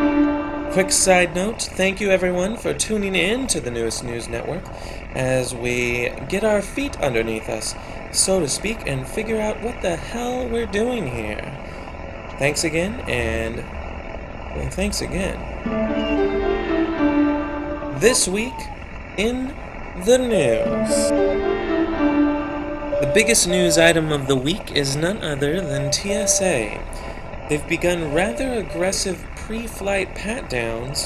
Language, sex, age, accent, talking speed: English, male, 30-49, American, 120 wpm